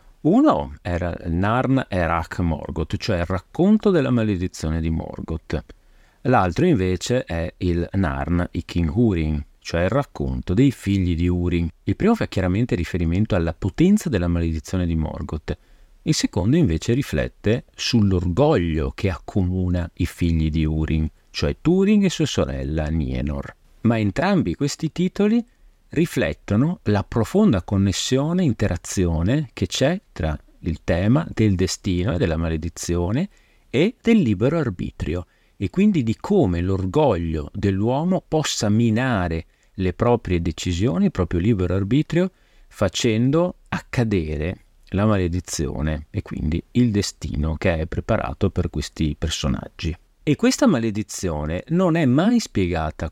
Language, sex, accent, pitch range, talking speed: Italian, male, native, 85-120 Hz, 130 wpm